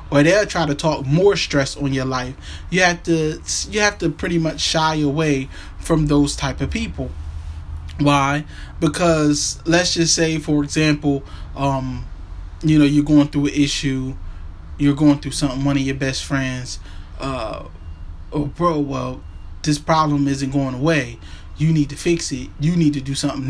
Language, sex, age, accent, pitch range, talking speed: English, male, 20-39, American, 125-165 Hz, 180 wpm